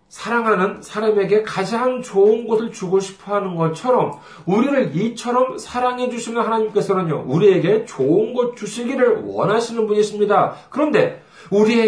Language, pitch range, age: Korean, 170-250 Hz, 40-59